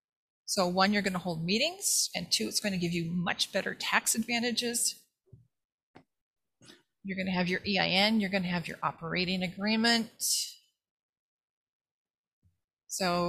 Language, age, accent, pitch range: English, 30-49, American, 180-230 Hz